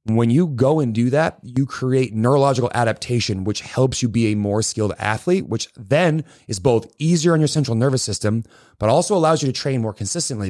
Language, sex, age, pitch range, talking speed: English, male, 30-49, 110-140 Hz, 205 wpm